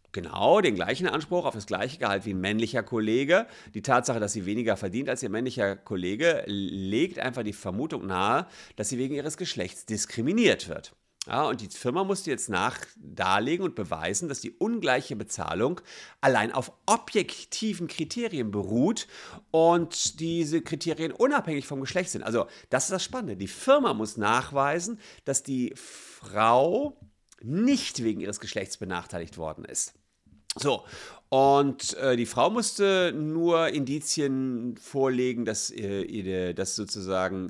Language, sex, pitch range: German, male, 95-135 Hz